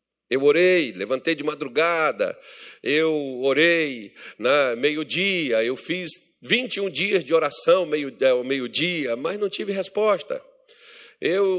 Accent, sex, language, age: Brazilian, male, Portuguese, 50-69